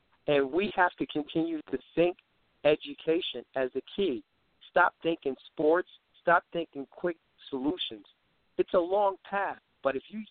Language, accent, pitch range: English, American, 125-145 Hz